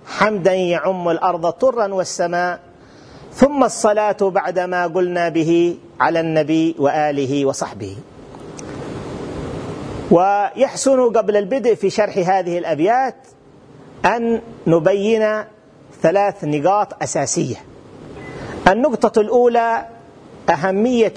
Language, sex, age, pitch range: Arabic, male, 40-59, 150-220 Hz